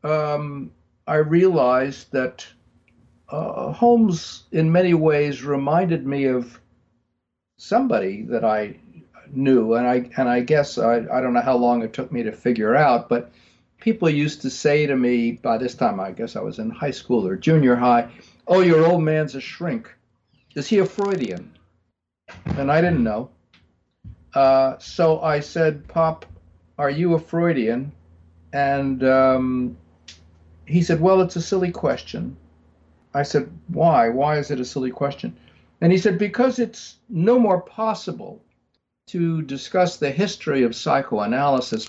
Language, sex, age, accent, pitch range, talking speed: English, male, 60-79, American, 120-170 Hz, 155 wpm